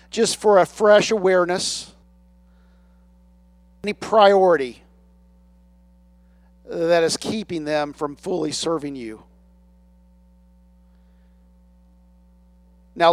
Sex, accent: male, American